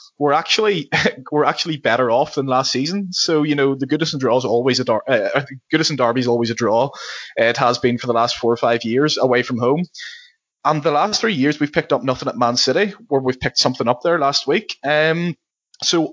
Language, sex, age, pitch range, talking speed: English, male, 20-39, 125-155 Hz, 225 wpm